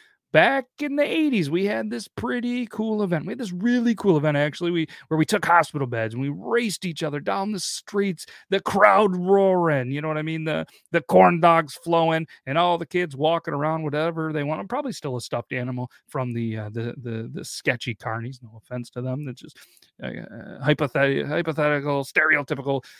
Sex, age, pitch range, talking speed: male, 30-49, 130-185 Hz, 200 wpm